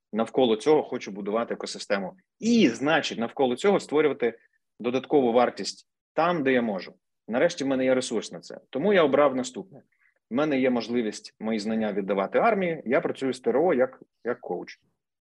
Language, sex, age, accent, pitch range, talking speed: Ukrainian, male, 30-49, native, 105-160 Hz, 160 wpm